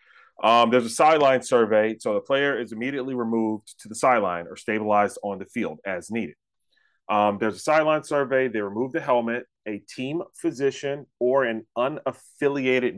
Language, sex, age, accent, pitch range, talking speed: English, male, 30-49, American, 100-130 Hz, 165 wpm